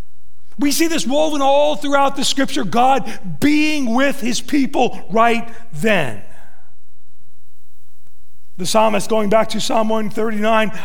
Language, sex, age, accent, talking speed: English, male, 40-59, American, 120 wpm